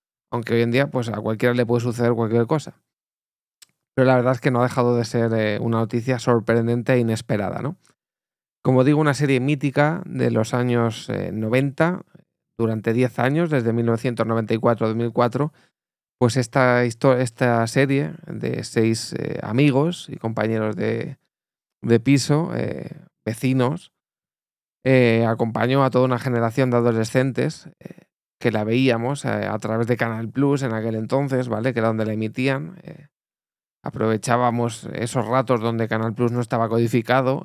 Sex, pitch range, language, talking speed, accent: male, 115-135 Hz, Spanish, 150 wpm, Spanish